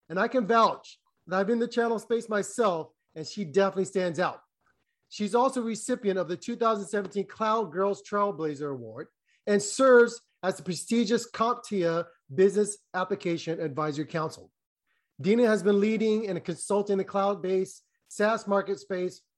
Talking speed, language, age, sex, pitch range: 150 wpm, English, 30-49, male, 175-220 Hz